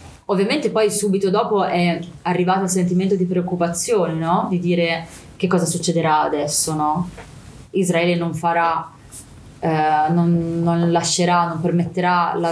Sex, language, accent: female, Italian, native